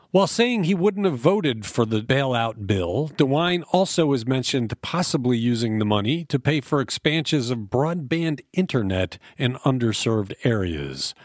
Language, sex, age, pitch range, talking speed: English, male, 40-59, 115-165 Hz, 150 wpm